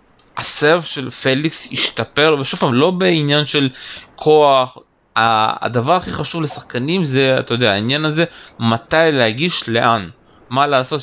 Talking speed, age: 130 wpm, 20-39